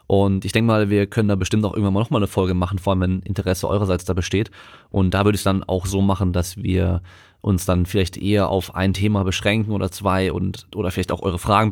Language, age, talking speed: German, 20-39, 250 wpm